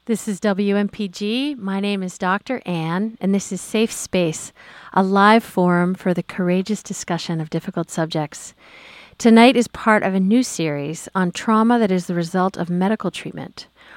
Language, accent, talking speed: English, American, 170 wpm